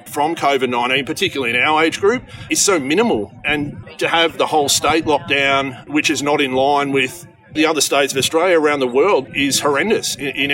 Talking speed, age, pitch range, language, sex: 195 wpm, 30-49, 130-160 Hz, Bulgarian, male